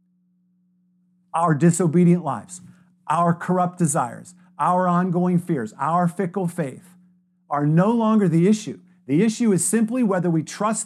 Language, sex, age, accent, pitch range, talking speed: English, male, 50-69, American, 175-200 Hz, 135 wpm